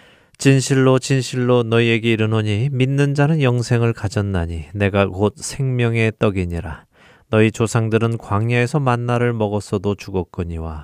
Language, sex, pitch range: Korean, male, 95-125 Hz